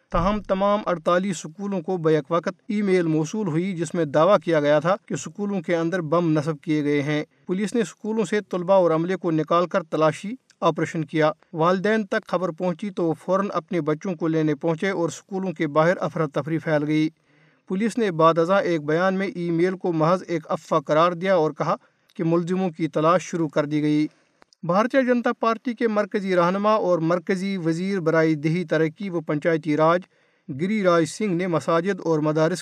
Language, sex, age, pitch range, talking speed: Urdu, male, 50-69, 160-190 Hz, 195 wpm